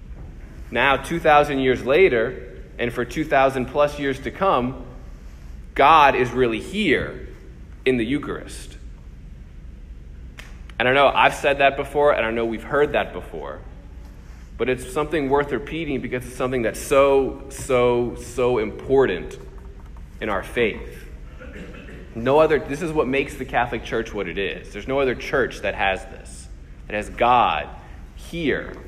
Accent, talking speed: American, 150 wpm